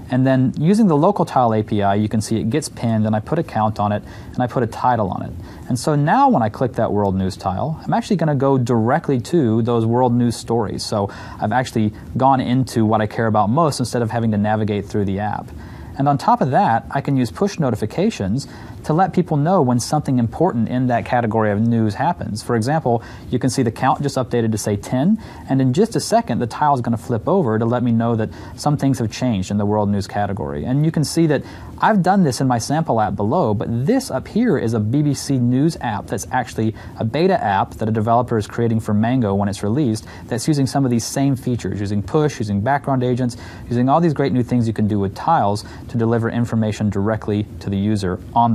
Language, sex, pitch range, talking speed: English, male, 105-135 Hz, 240 wpm